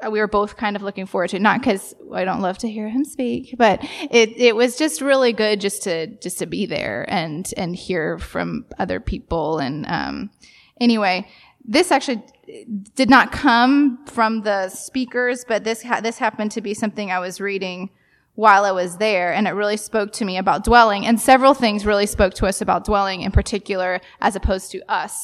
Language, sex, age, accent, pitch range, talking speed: English, female, 20-39, American, 190-235 Hz, 205 wpm